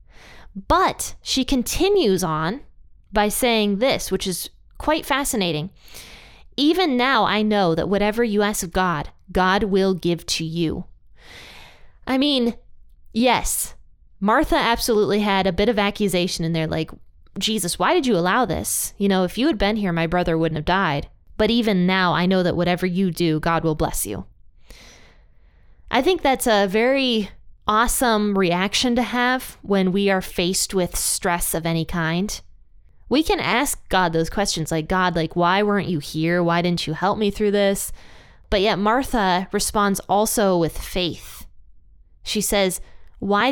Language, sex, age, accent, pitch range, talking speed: English, female, 20-39, American, 175-220 Hz, 165 wpm